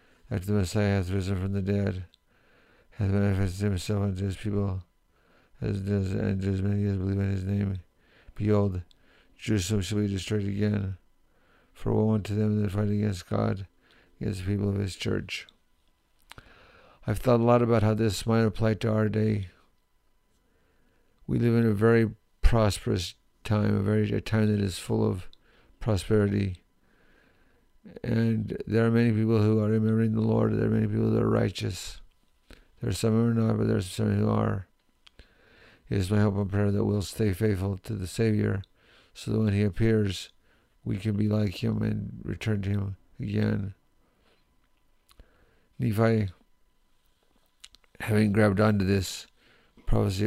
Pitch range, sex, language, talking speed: 100-110 Hz, male, English, 160 wpm